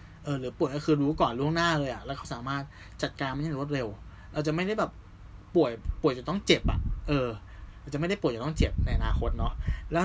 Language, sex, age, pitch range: Thai, male, 20-39, 100-155 Hz